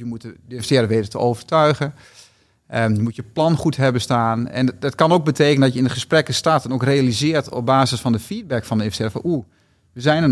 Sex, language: male, Dutch